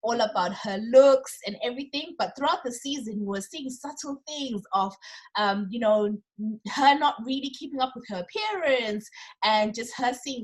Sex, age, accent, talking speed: female, 20-39, South African, 180 wpm